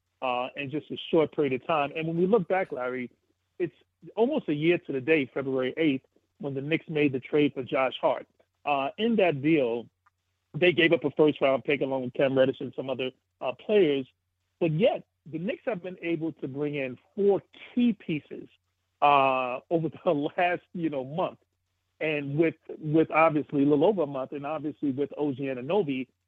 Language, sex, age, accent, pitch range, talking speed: English, male, 40-59, American, 130-165 Hz, 190 wpm